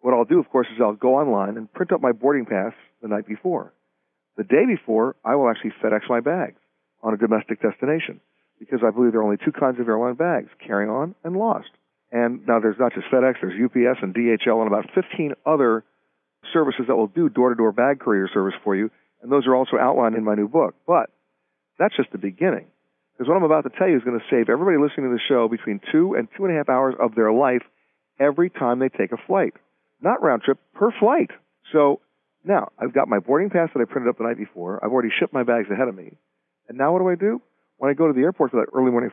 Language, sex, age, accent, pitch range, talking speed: English, male, 50-69, American, 105-150 Hz, 245 wpm